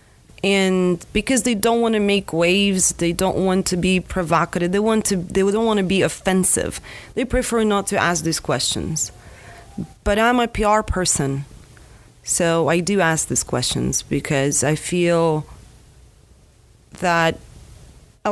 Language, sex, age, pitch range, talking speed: English, female, 30-49, 165-205 Hz, 150 wpm